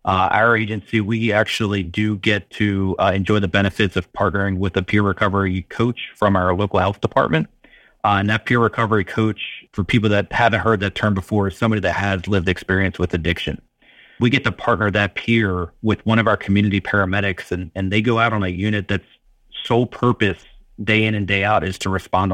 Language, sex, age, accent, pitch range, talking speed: English, male, 30-49, American, 95-110 Hz, 205 wpm